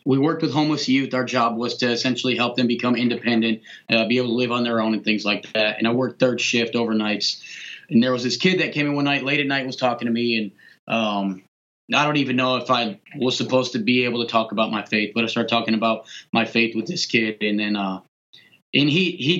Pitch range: 120-155 Hz